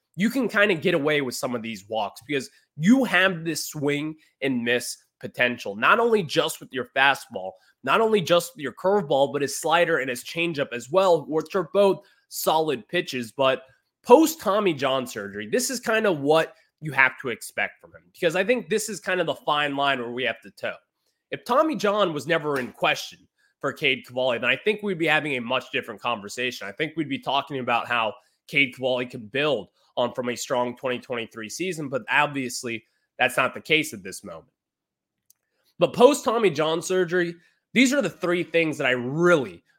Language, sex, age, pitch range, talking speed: English, male, 20-39, 125-185 Hz, 200 wpm